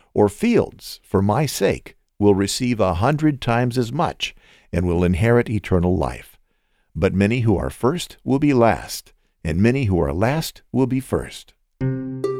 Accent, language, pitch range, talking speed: American, English, 105-140 Hz, 160 wpm